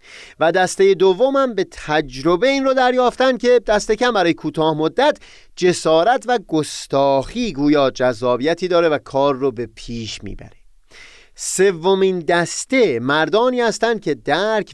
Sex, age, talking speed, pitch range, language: male, 30-49, 135 wpm, 130-200 Hz, Persian